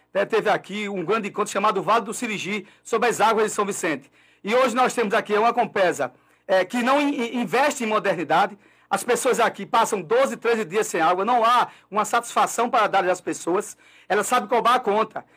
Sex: male